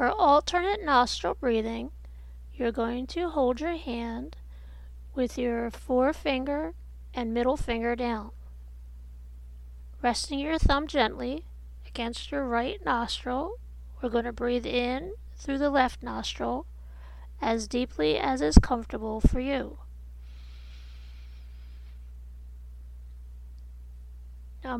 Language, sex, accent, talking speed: English, female, American, 100 wpm